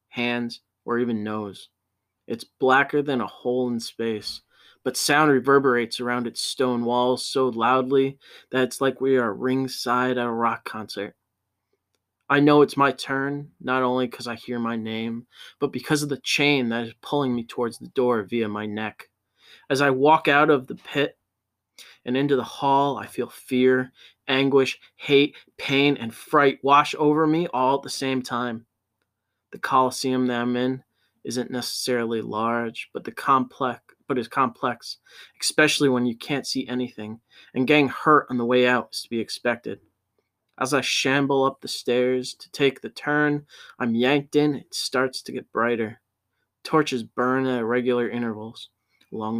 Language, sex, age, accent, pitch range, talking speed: English, male, 20-39, American, 115-140 Hz, 170 wpm